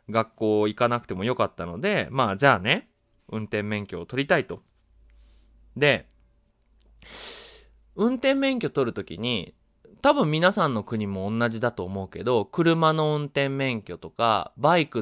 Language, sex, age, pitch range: Japanese, male, 20-39, 100-165 Hz